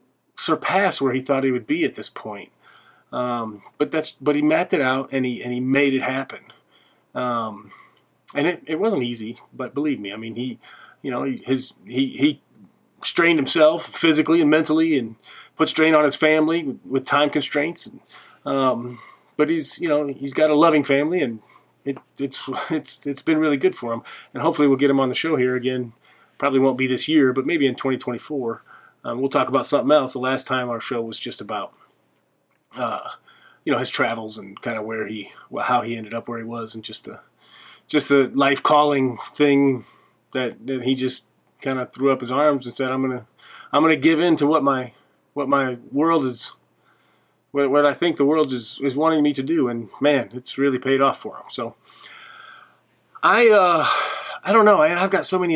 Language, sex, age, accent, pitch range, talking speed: English, male, 30-49, American, 125-150 Hz, 205 wpm